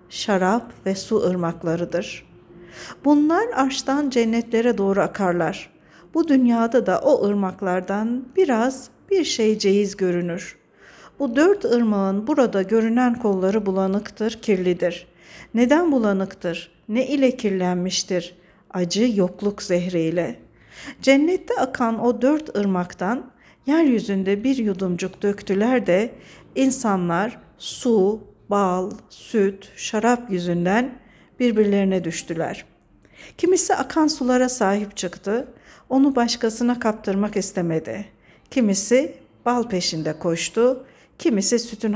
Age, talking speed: 60-79, 95 wpm